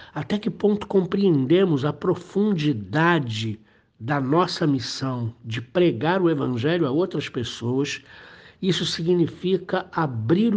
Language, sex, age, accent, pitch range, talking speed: Portuguese, male, 60-79, Brazilian, 125-165 Hz, 110 wpm